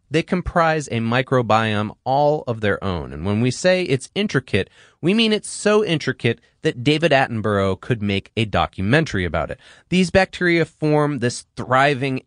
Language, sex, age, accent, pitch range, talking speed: English, male, 30-49, American, 105-160 Hz, 160 wpm